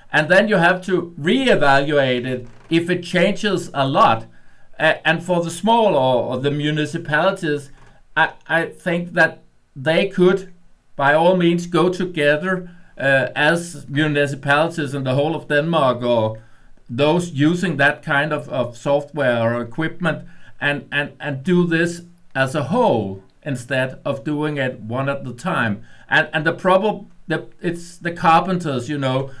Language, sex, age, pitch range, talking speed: English, male, 60-79, 140-175 Hz, 150 wpm